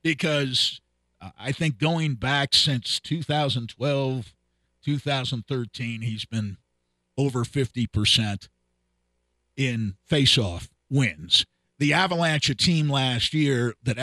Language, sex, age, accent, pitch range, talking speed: English, male, 50-69, American, 95-145 Hz, 90 wpm